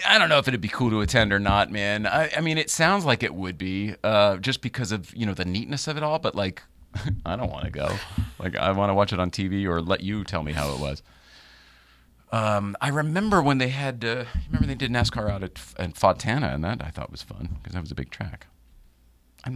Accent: American